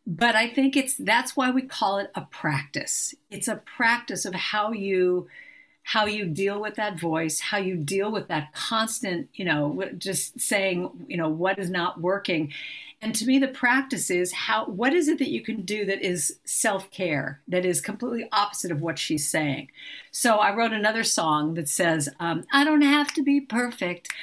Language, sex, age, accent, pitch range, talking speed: English, female, 50-69, American, 180-265 Hz, 195 wpm